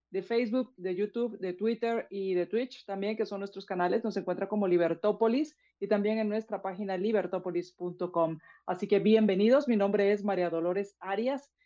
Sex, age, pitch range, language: female, 40-59, 185-220 Hz, Spanish